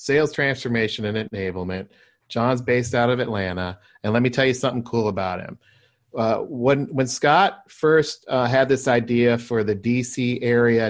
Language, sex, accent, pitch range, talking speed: English, male, American, 110-130 Hz, 170 wpm